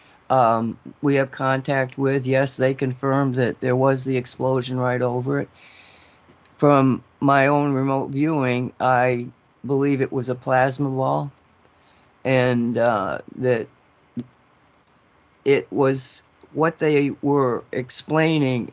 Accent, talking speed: American, 120 wpm